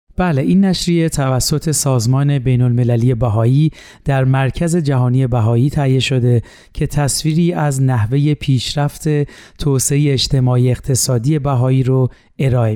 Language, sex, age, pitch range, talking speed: Persian, male, 40-59, 130-150 Hz, 120 wpm